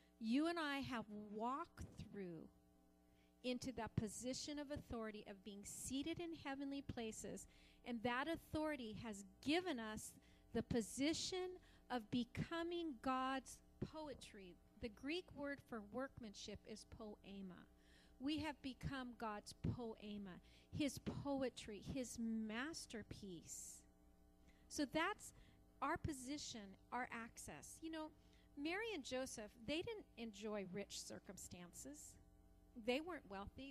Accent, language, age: American, English, 40-59